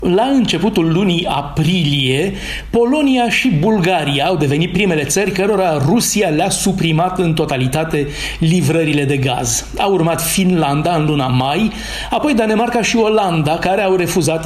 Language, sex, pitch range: Romanian, male, 150-200 Hz